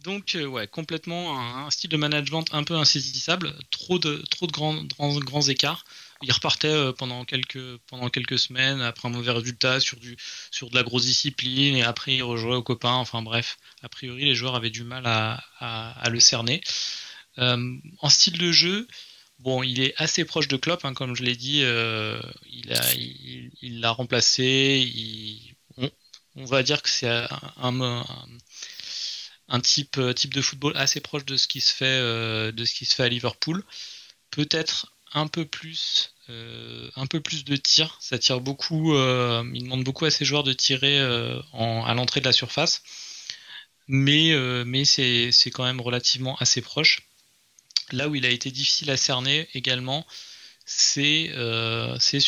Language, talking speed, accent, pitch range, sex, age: French, 185 wpm, French, 125-145 Hz, male, 20-39